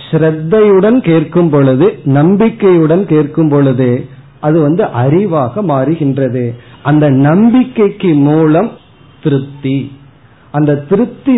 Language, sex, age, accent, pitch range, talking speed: Tamil, male, 40-59, native, 135-175 Hz, 80 wpm